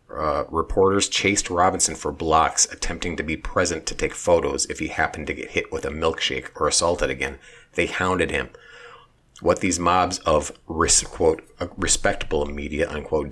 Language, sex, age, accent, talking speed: English, male, 30-49, American, 160 wpm